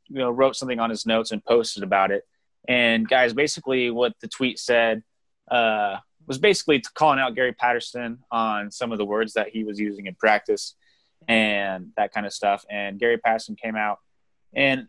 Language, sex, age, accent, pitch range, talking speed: English, male, 20-39, American, 110-135 Hz, 190 wpm